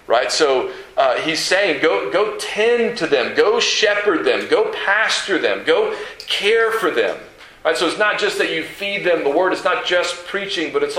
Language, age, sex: English, 40-59, male